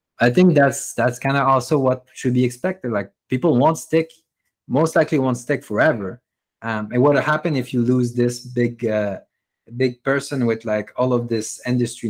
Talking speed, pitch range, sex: 190 wpm, 115-140 Hz, male